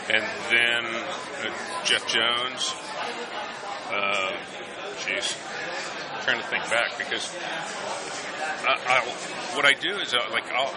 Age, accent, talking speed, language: 40-59, American, 115 wpm, English